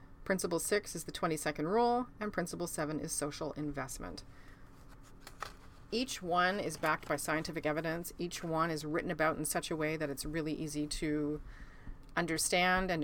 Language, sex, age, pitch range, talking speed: English, female, 40-59, 150-180 Hz, 160 wpm